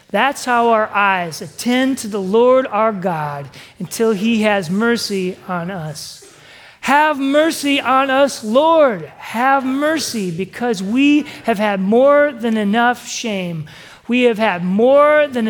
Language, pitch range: English, 175-245 Hz